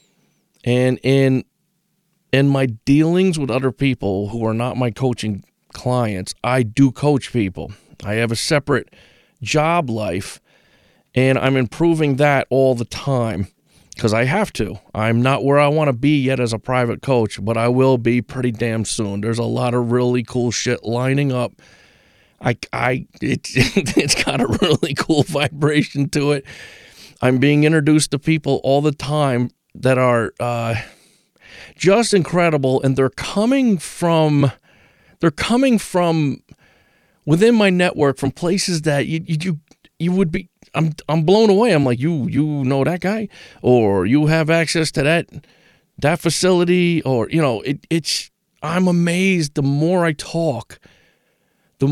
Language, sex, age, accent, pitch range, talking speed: English, male, 40-59, American, 125-160 Hz, 160 wpm